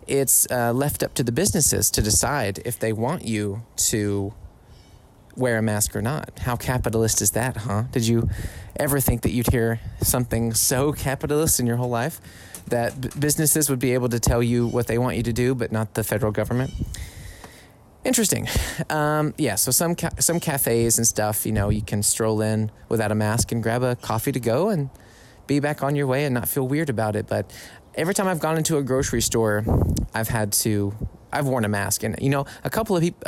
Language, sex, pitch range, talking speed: English, male, 110-140 Hz, 210 wpm